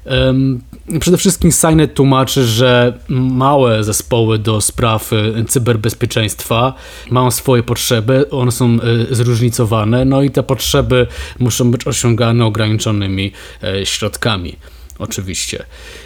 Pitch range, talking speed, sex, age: 105-125 Hz, 95 wpm, male, 20-39